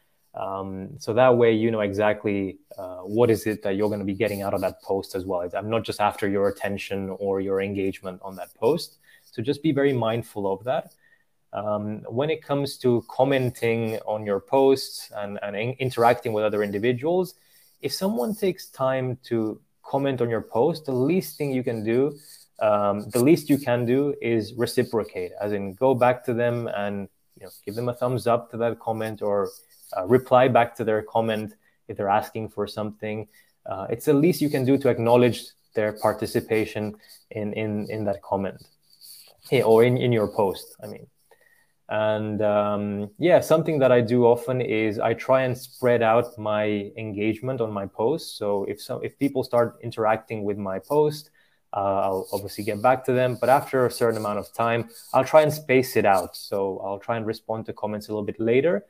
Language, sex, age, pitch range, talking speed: English, male, 20-39, 105-130 Hz, 200 wpm